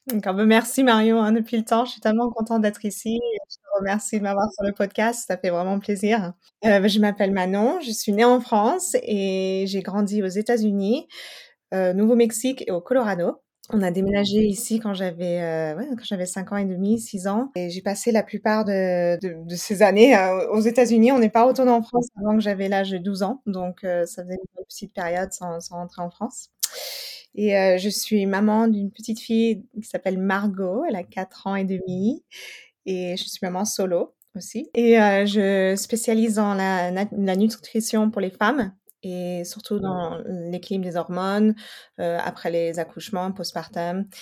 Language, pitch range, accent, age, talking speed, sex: French, 185-220 Hz, French, 20-39, 195 wpm, female